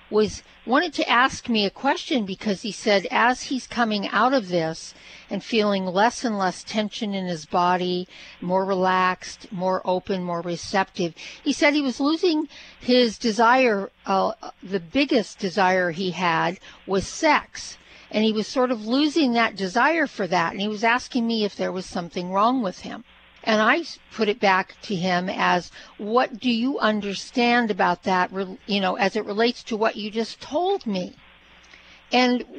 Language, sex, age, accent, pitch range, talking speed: English, female, 50-69, American, 195-250 Hz, 175 wpm